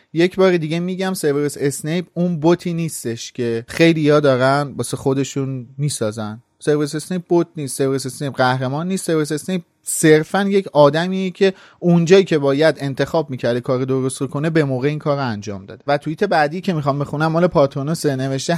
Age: 30-49